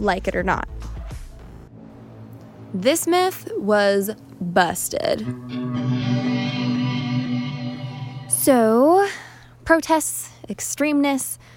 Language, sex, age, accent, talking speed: English, female, 10-29, American, 55 wpm